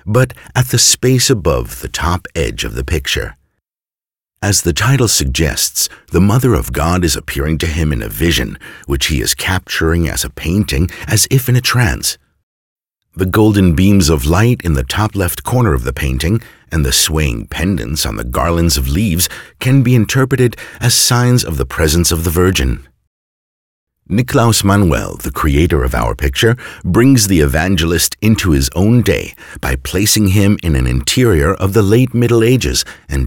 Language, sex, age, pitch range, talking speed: English, male, 50-69, 75-115 Hz, 175 wpm